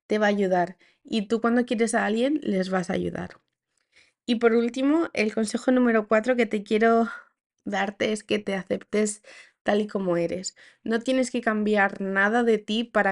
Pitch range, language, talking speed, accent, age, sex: 195-235 Hz, Spanish, 190 wpm, Spanish, 20-39, female